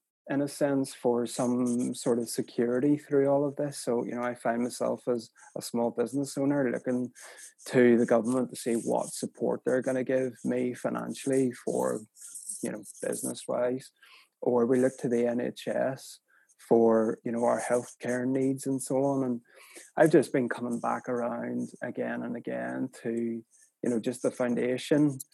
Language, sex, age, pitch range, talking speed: English, male, 20-39, 120-135 Hz, 170 wpm